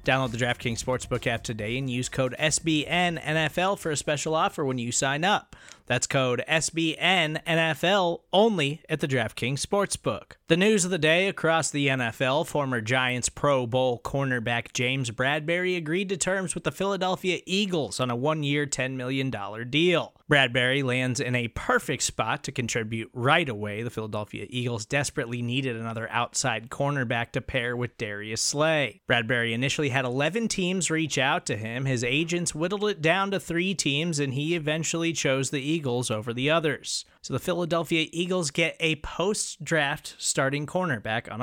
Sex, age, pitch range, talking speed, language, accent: male, 20-39, 125-165 Hz, 165 wpm, English, American